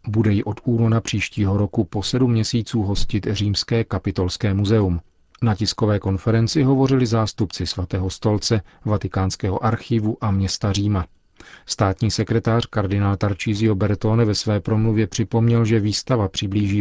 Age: 40-59